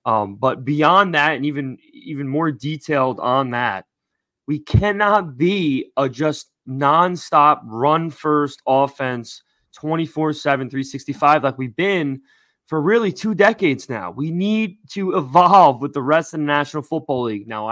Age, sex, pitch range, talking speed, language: 20-39, male, 135-175 Hz, 140 wpm, English